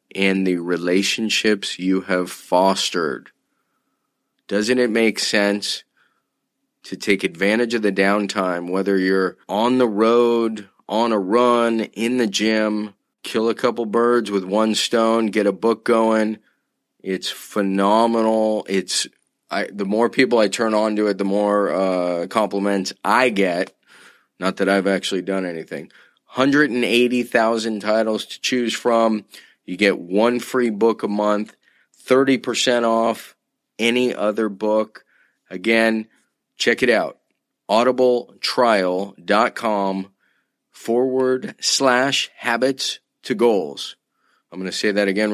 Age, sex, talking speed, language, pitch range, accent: 30-49, male, 125 wpm, English, 100-120 Hz, American